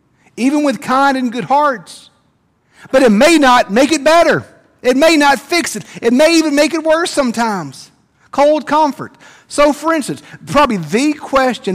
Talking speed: 170 wpm